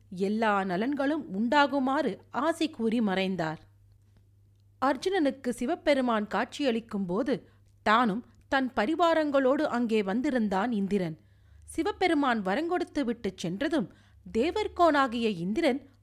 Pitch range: 185-285 Hz